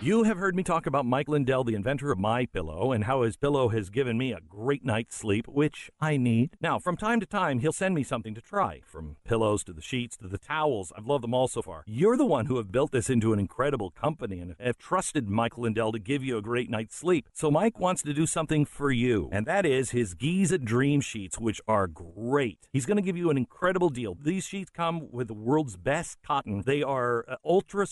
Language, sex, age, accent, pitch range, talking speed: English, male, 50-69, American, 120-170 Hz, 240 wpm